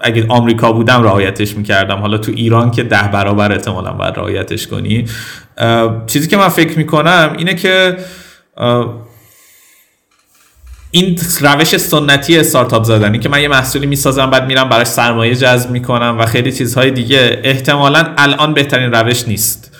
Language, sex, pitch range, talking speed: Persian, male, 110-145 Hz, 140 wpm